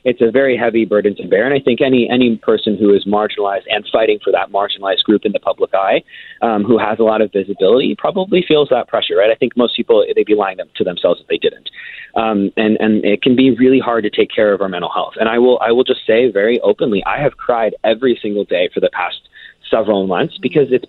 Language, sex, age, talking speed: English, male, 30-49, 250 wpm